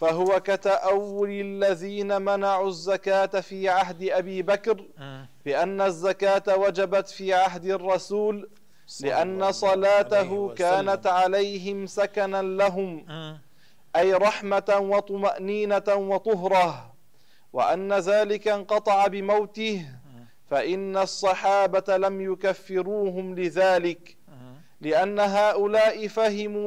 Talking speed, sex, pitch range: 85 wpm, male, 185-200 Hz